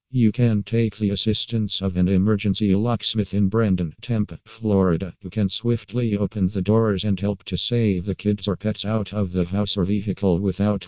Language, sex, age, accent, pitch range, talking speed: English, male, 50-69, American, 95-110 Hz, 190 wpm